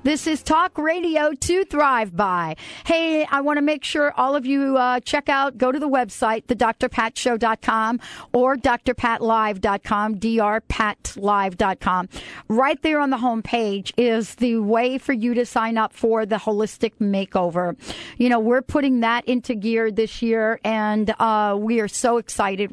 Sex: female